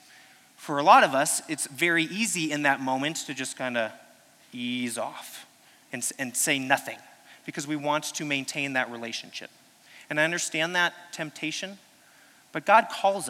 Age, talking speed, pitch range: 30-49, 160 wpm, 135-185 Hz